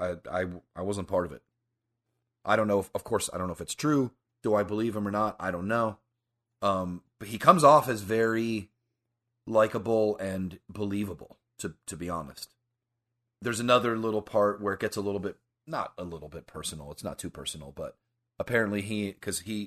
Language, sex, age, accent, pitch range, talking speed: English, male, 30-49, American, 85-115 Hz, 200 wpm